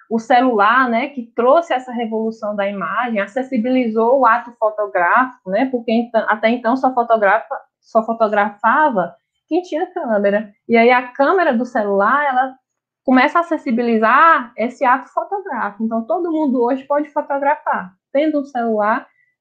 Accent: Brazilian